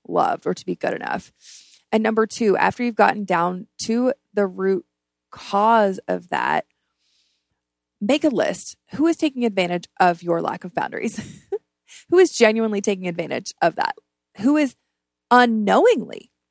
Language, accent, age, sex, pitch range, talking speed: English, American, 20-39, female, 185-250 Hz, 150 wpm